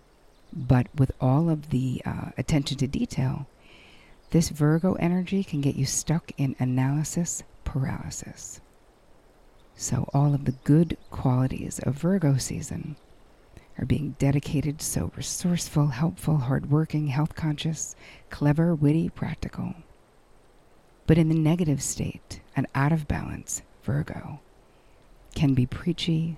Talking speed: 120 wpm